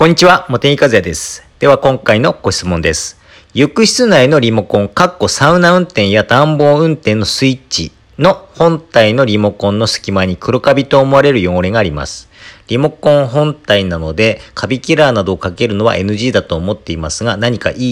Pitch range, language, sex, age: 100-160 Hz, Japanese, male, 40-59